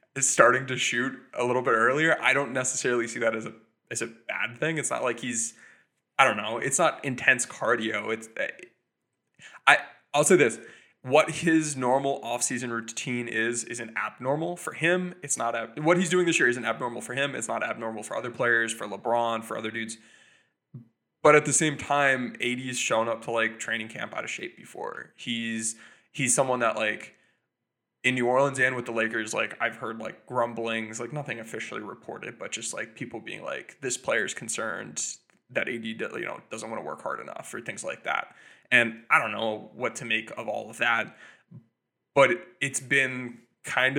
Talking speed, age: 195 wpm, 20-39